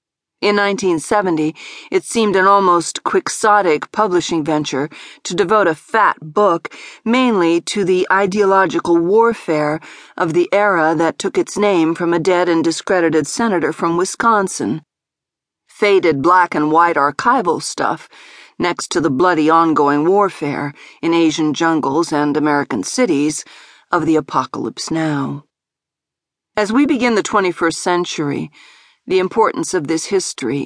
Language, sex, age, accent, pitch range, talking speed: English, female, 40-59, American, 160-205 Hz, 125 wpm